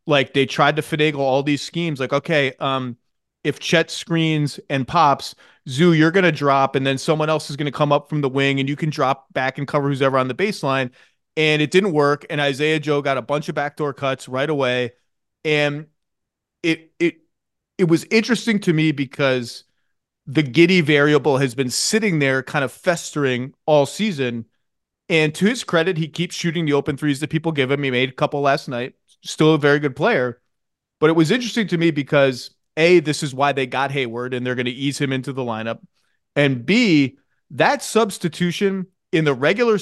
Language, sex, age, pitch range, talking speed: English, male, 30-49, 135-165 Hz, 205 wpm